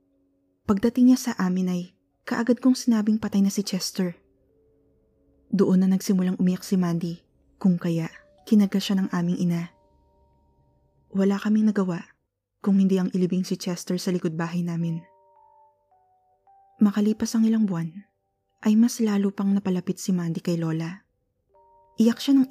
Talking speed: 140 wpm